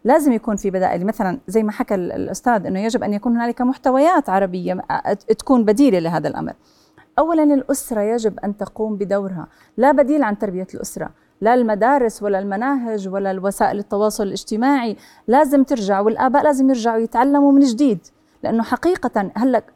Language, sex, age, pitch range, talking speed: Arabic, female, 30-49, 215-275 Hz, 150 wpm